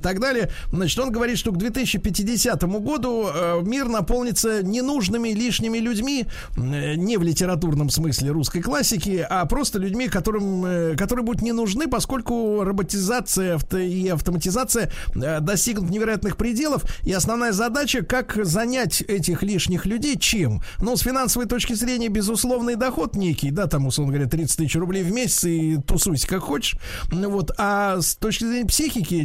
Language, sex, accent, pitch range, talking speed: Russian, male, native, 165-230 Hz, 145 wpm